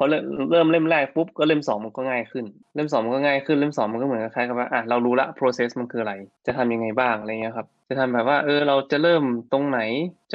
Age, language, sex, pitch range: 20-39, Thai, male, 115-140 Hz